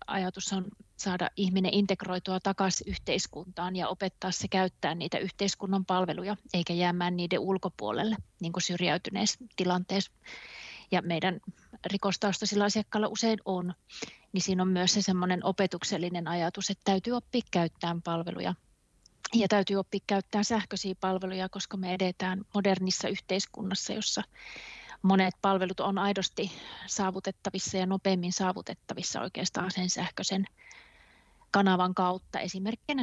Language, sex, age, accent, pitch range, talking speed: Finnish, female, 30-49, native, 180-200 Hz, 120 wpm